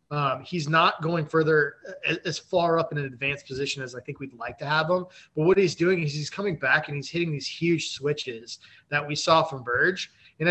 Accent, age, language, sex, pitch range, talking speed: American, 20-39, English, male, 145-180 Hz, 230 wpm